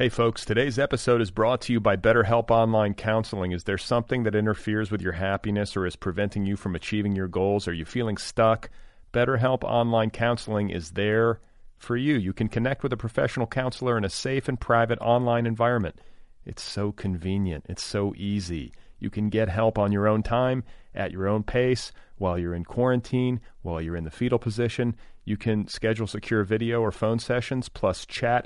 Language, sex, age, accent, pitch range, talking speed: English, male, 40-59, American, 100-120 Hz, 190 wpm